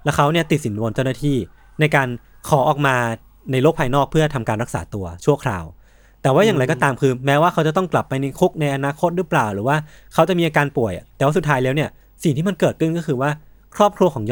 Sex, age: male, 20-39